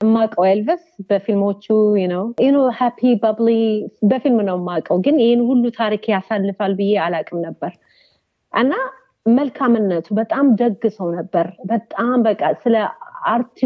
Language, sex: Amharic, female